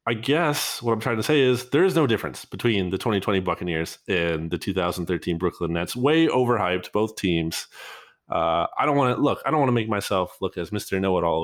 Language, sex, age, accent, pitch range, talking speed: English, male, 20-39, American, 105-140 Hz, 215 wpm